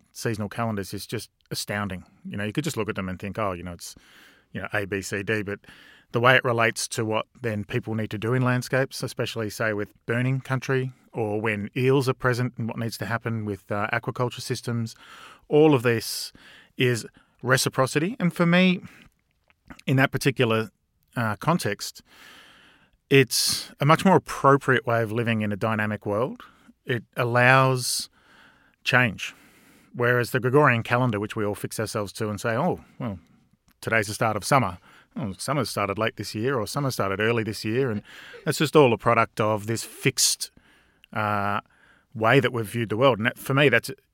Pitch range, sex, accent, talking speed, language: 105-130 Hz, male, Australian, 190 wpm, English